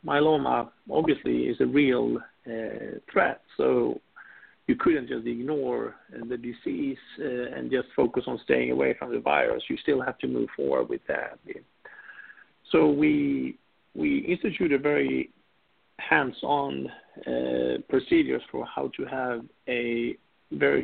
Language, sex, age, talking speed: English, male, 50-69, 135 wpm